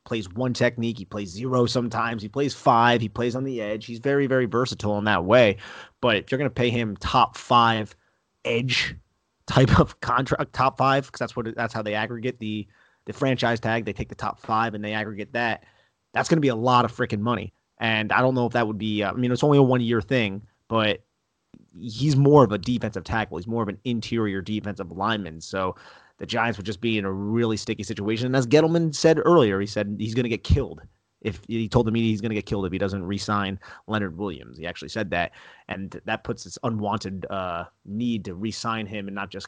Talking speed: 230 wpm